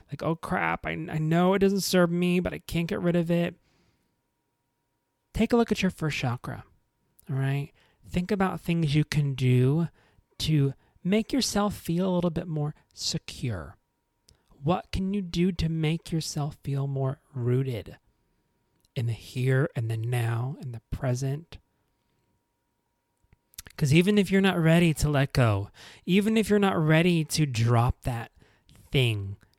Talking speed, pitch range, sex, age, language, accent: 160 wpm, 120-175 Hz, male, 30-49, English, American